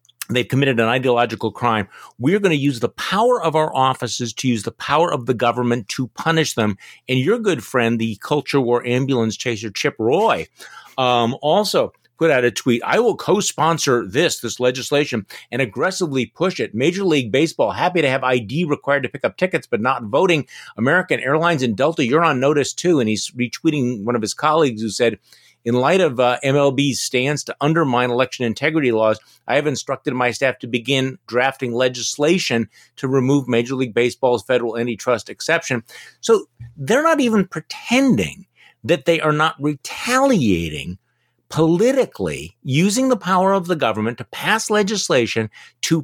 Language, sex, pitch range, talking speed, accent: English, male, 120-165 Hz, 170 wpm, American